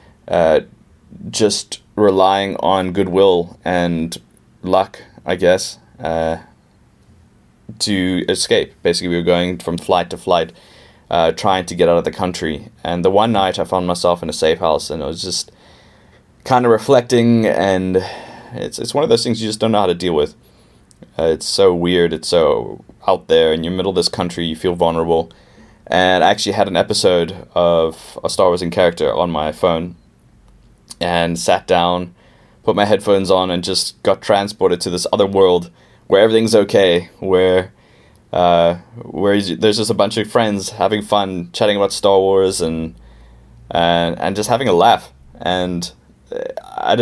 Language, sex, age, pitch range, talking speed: English, male, 20-39, 85-105 Hz, 170 wpm